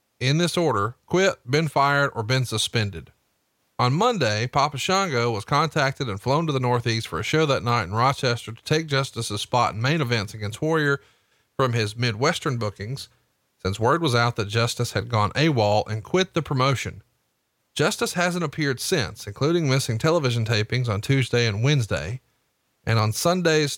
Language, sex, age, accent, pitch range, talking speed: English, male, 40-59, American, 110-145 Hz, 170 wpm